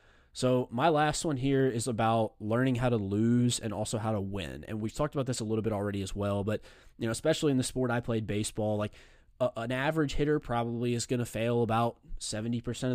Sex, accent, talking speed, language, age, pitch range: male, American, 225 wpm, English, 20-39, 110-125 Hz